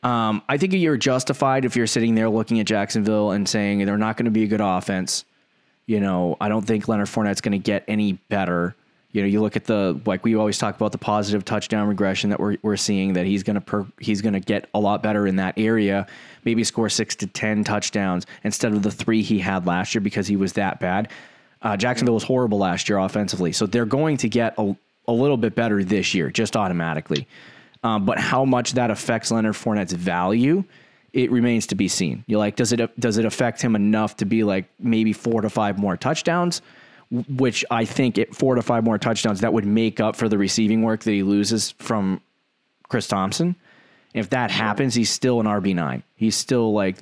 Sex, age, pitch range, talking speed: male, 20-39, 100-115 Hz, 225 wpm